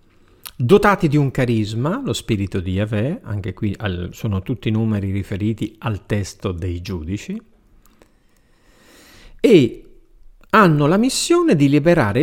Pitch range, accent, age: 95-155 Hz, native, 50-69